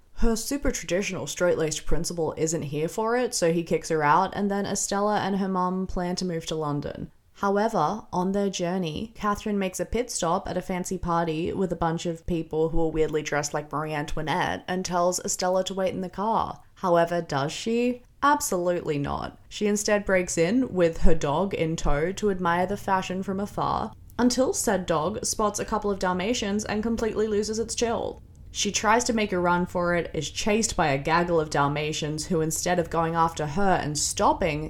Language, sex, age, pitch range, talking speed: English, female, 20-39, 165-210 Hz, 195 wpm